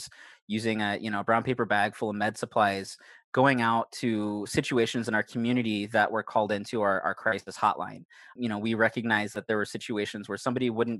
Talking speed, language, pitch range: 200 wpm, English, 105-120 Hz